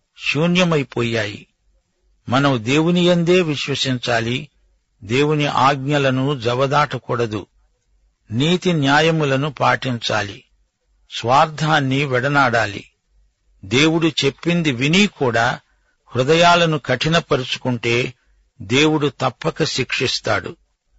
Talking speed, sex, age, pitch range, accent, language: 60 wpm, male, 60-79, 125-155 Hz, native, Telugu